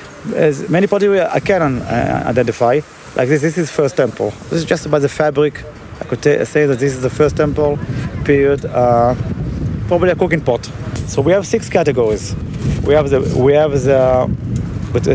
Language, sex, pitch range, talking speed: English, male, 120-150 Hz, 180 wpm